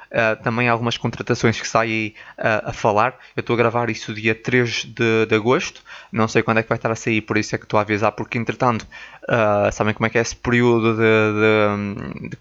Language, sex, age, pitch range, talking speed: Portuguese, male, 20-39, 115-125 Hz, 235 wpm